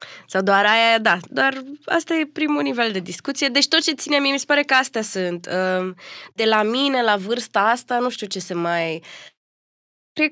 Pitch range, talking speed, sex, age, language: 185-255 Hz, 200 wpm, female, 20-39, Romanian